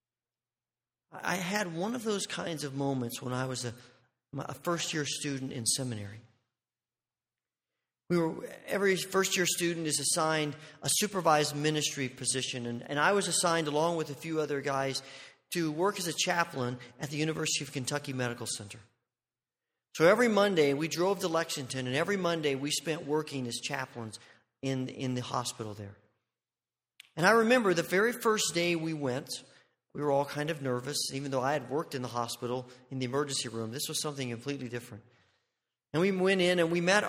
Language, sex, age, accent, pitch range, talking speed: English, male, 40-59, American, 125-165 Hz, 180 wpm